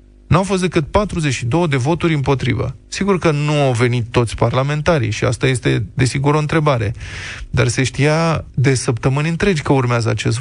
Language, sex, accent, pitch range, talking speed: Romanian, male, native, 120-165 Hz, 165 wpm